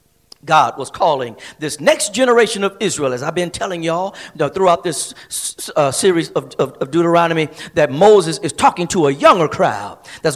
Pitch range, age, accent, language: 165-220 Hz, 50-69, American, English